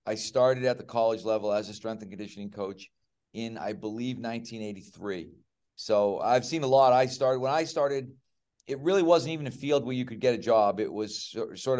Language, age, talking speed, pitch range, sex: English, 40-59, 210 wpm, 105-125 Hz, male